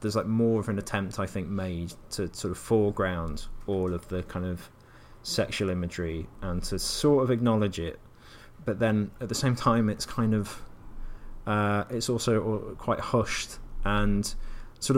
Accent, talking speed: British, 170 wpm